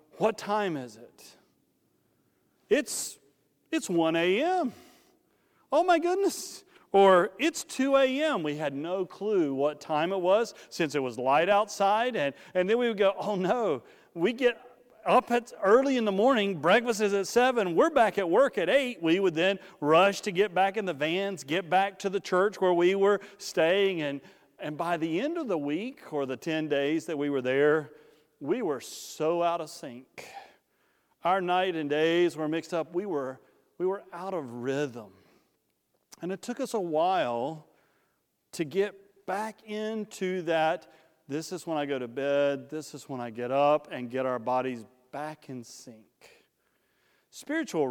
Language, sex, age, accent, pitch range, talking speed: English, male, 40-59, American, 150-210 Hz, 175 wpm